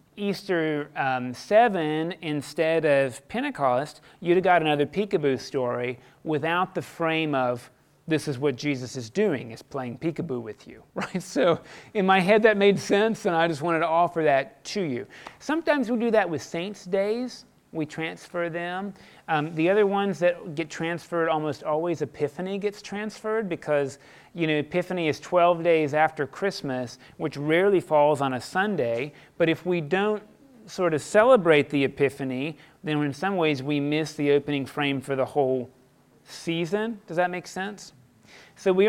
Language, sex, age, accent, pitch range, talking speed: English, male, 30-49, American, 145-185 Hz, 170 wpm